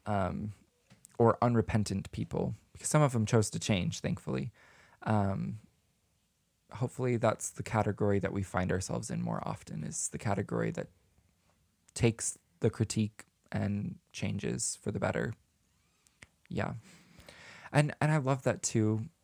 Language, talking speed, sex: English, 135 wpm, male